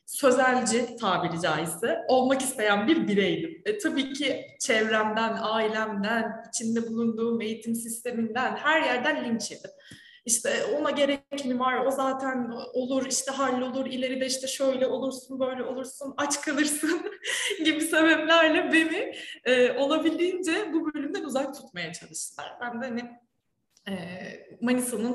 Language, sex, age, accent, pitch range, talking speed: Turkish, female, 20-39, native, 210-275 Hz, 120 wpm